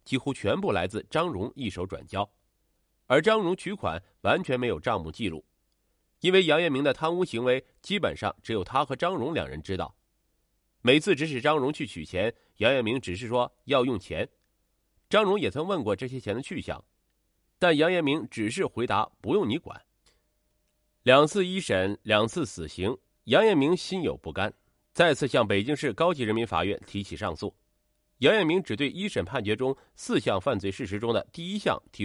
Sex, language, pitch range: male, Chinese, 105-160 Hz